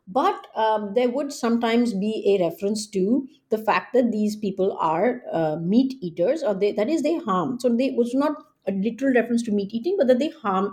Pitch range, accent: 195-255 Hz, Indian